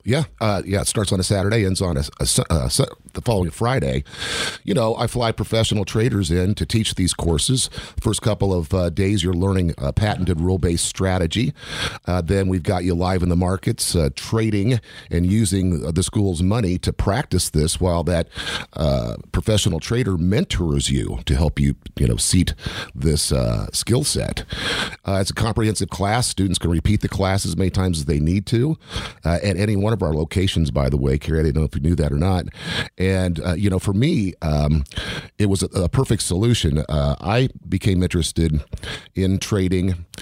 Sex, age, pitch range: male, 50-69, 85-105 Hz